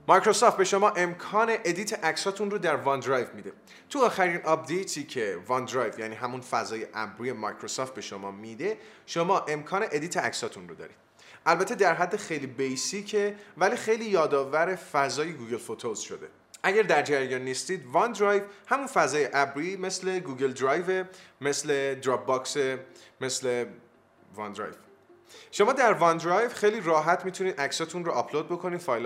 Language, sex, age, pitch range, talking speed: Persian, male, 20-39, 130-190 Hz, 140 wpm